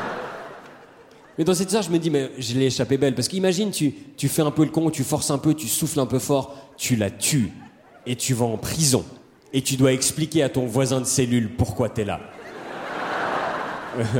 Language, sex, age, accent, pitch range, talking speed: French, male, 30-49, French, 125-165 Hz, 215 wpm